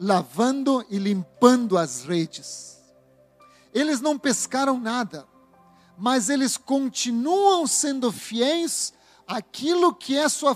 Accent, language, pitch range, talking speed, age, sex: Brazilian, Portuguese, 205-270 Hz, 100 wpm, 40-59, male